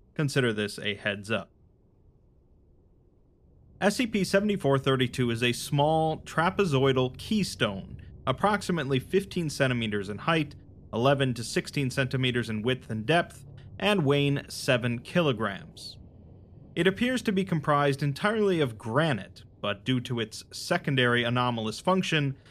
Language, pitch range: English, 115-155 Hz